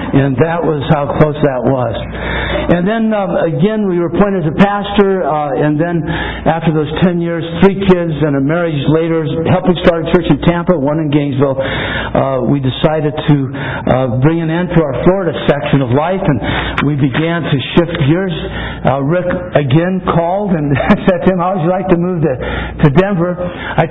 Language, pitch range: English, 150-180 Hz